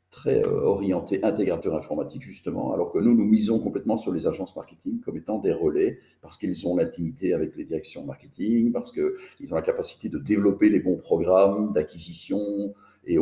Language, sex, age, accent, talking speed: French, male, 40-59, French, 180 wpm